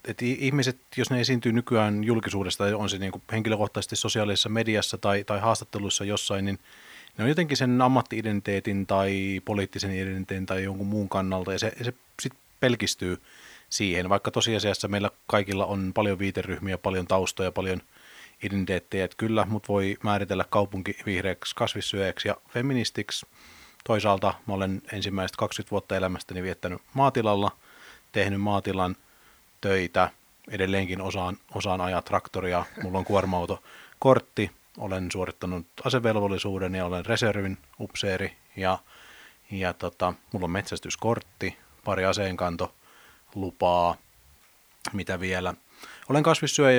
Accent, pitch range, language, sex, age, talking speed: native, 95-110 Hz, Finnish, male, 30-49, 125 wpm